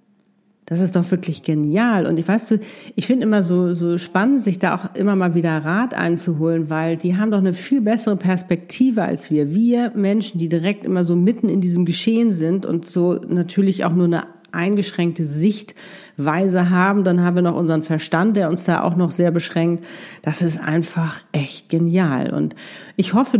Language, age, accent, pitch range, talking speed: German, 50-69, German, 170-210 Hz, 190 wpm